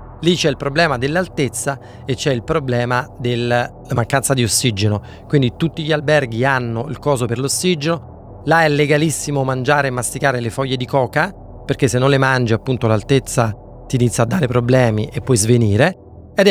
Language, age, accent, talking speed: Italian, 30-49, native, 175 wpm